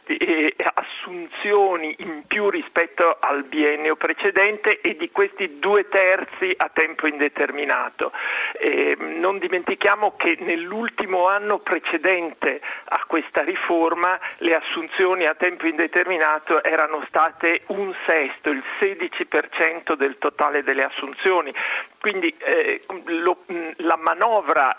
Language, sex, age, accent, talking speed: Italian, male, 50-69, native, 105 wpm